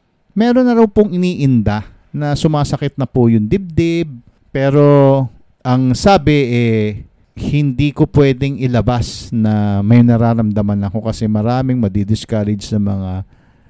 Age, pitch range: 50-69, 115-155 Hz